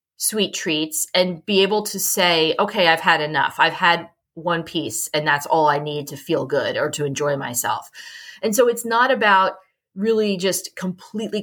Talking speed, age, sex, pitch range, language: 185 wpm, 30-49, female, 165-210 Hz, English